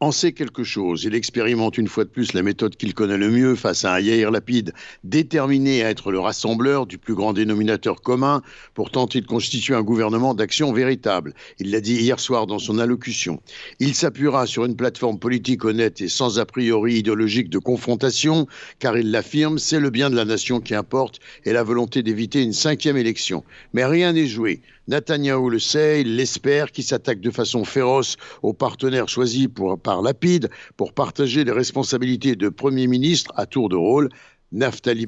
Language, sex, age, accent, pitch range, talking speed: Italian, male, 60-79, French, 115-145 Hz, 190 wpm